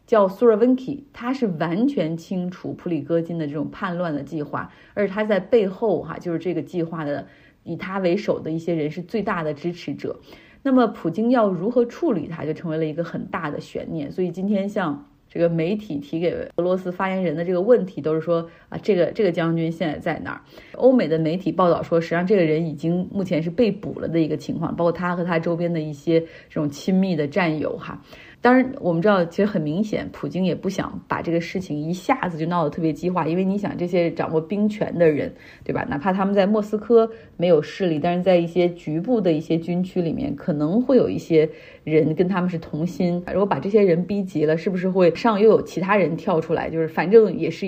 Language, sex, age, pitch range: Chinese, female, 30-49, 160-200 Hz